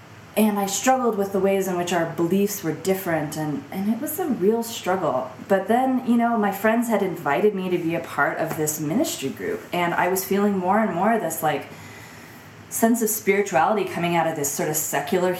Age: 20-39